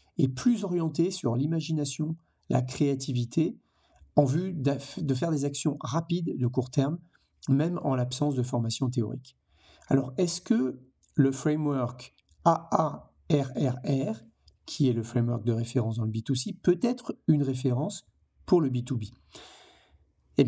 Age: 50-69